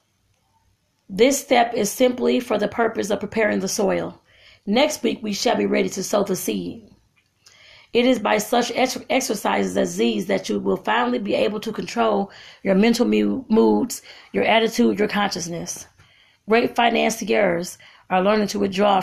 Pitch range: 185-225 Hz